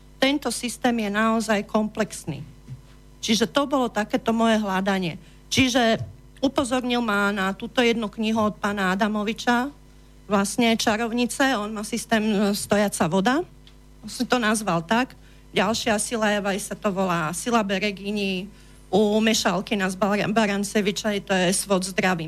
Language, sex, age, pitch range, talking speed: Slovak, female, 40-59, 190-230 Hz, 130 wpm